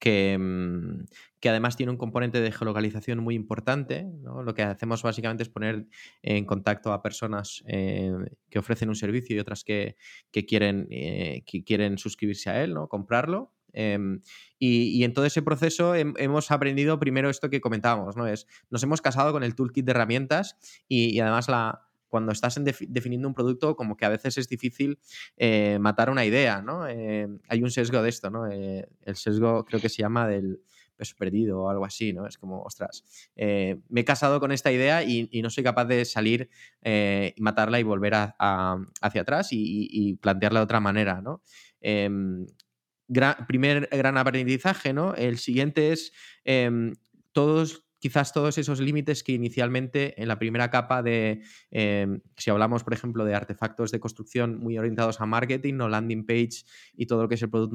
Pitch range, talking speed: 105-130 Hz, 185 wpm